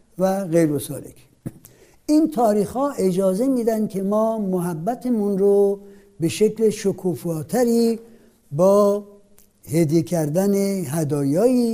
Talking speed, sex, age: 95 wpm, male, 60-79